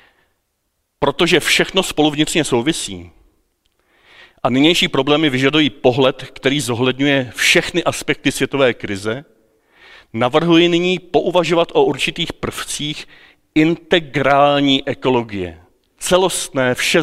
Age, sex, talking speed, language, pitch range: 40-59, male, 90 wpm, Czech, 115-155 Hz